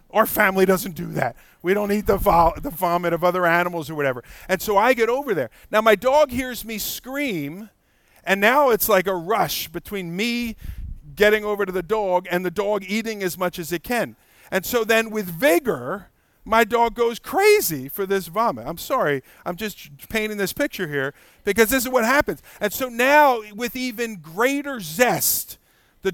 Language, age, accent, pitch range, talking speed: English, 50-69, American, 170-225 Hz, 190 wpm